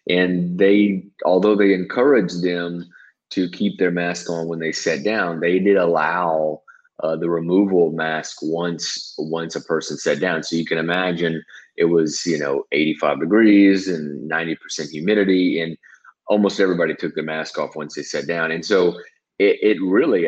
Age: 30-49